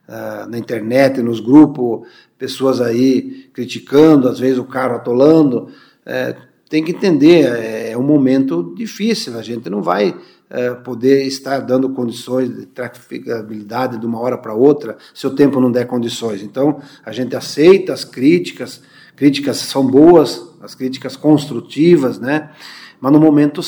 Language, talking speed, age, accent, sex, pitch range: Portuguese, 145 wpm, 50-69, Brazilian, male, 125-150 Hz